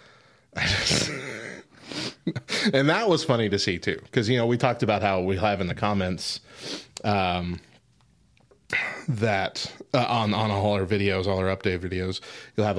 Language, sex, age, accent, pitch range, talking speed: English, male, 20-39, American, 100-155 Hz, 165 wpm